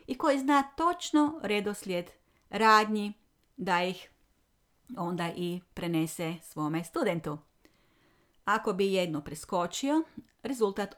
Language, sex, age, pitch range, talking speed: Croatian, female, 40-59, 170-250 Hz, 100 wpm